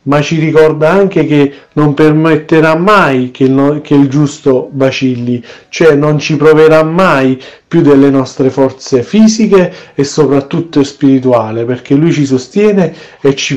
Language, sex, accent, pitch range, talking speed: Italian, male, native, 140-170 Hz, 135 wpm